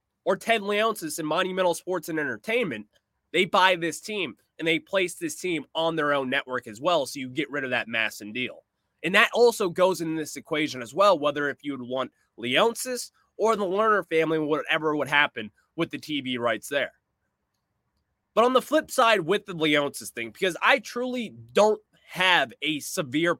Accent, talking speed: American, 190 wpm